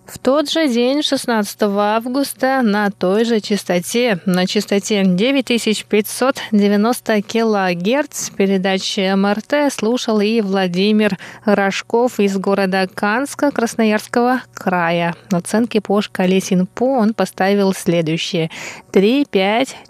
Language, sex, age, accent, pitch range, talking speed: Russian, female, 20-39, native, 200-245 Hz, 105 wpm